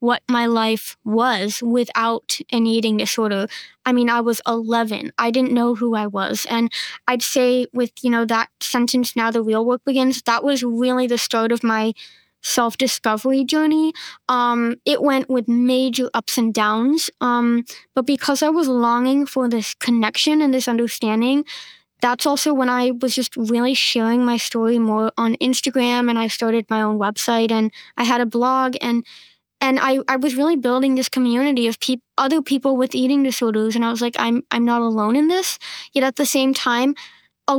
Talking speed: 185 wpm